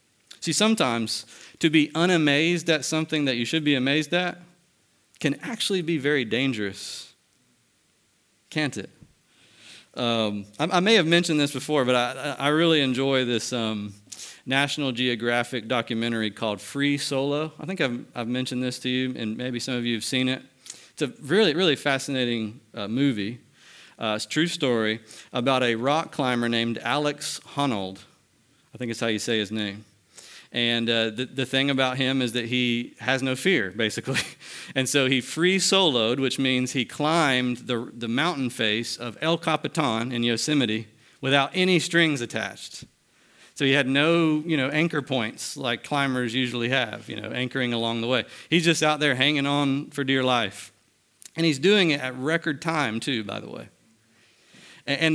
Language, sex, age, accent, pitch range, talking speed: English, male, 40-59, American, 120-155 Hz, 175 wpm